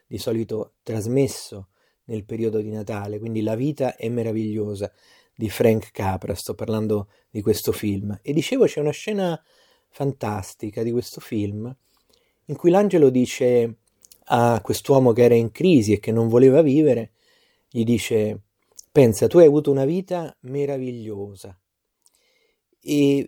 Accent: native